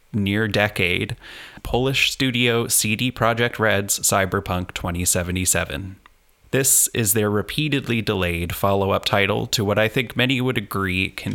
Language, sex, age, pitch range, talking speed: English, male, 20-39, 100-120 Hz, 125 wpm